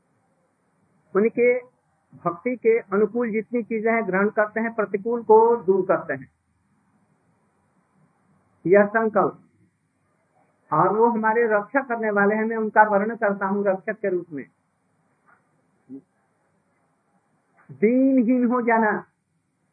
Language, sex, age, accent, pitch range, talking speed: Hindi, male, 50-69, native, 185-225 Hz, 115 wpm